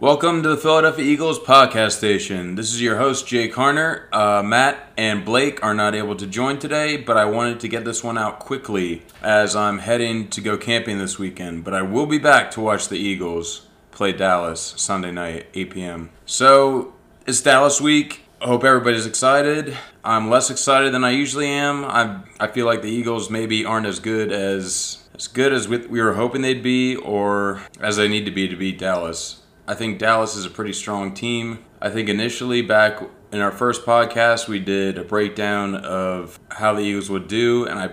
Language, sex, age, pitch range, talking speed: English, male, 20-39, 100-120 Hz, 200 wpm